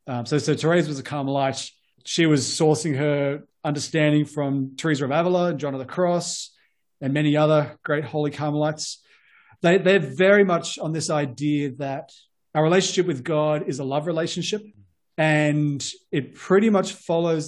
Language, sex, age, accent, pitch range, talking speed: English, male, 30-49, Australian, 140-160 Hz, 165 wpm